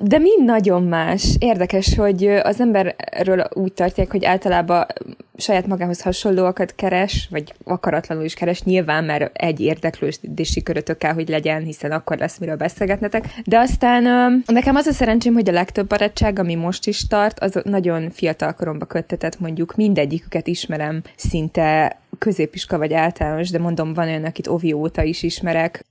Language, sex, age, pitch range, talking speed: Hungarian, female, 20-39, 165-210 Hz, 155 wpm